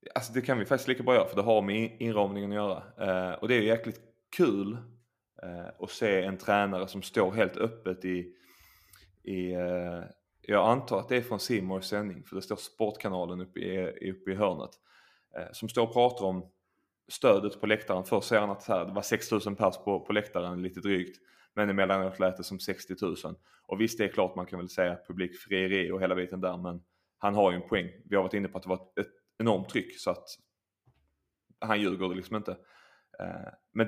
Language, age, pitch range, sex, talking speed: Swedish, 20-39, 95-110 Hz, male, 215 wpm